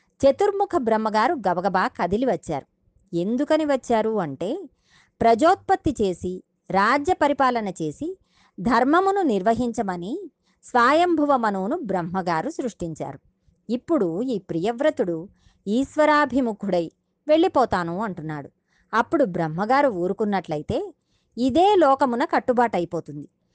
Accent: native